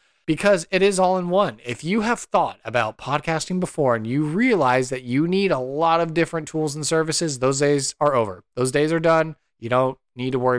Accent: American